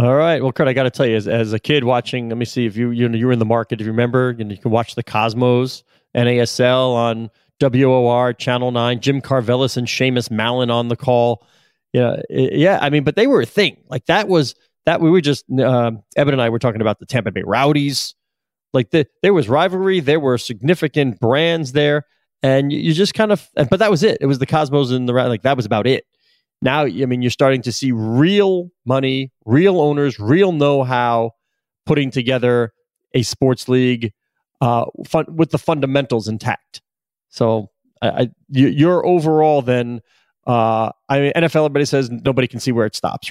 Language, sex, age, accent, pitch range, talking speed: English, male, 30-49, American, 115-145 Hz, 200 wpm